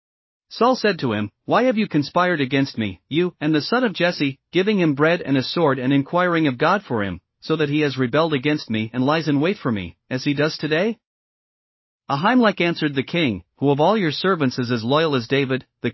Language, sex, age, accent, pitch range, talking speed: English, male, 40-59, American, 135-175 Hz, 225 wpm